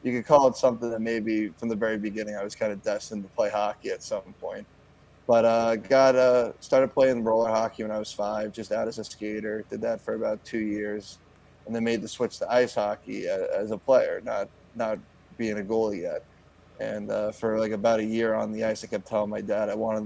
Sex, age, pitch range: male, 20-39, 110-120 Hz